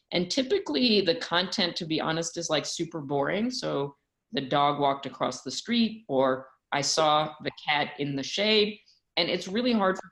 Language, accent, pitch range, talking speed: English, American, 135-170 Hz, 185 wpm